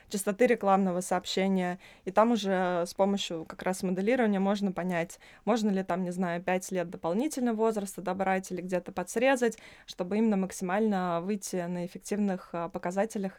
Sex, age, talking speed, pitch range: female, 20-39, 150 wpm, 175-210 Hz